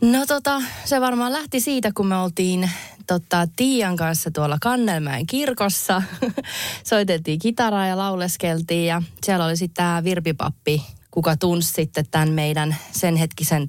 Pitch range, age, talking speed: 165-220 Hz, 20-39, 140 wpm